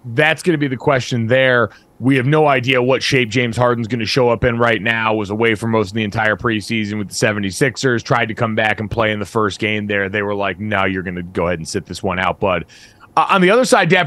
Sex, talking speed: male, 275 wpm